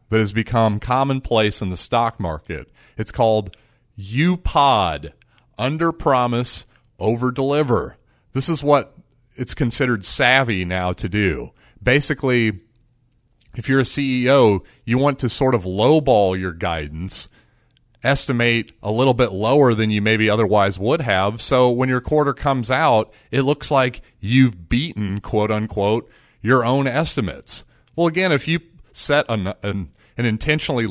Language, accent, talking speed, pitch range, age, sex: English, American, 140 wpm, 105-135 Hz, 40-59, male